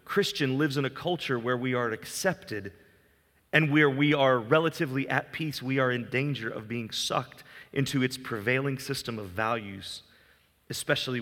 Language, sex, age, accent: English, male, 30-49, American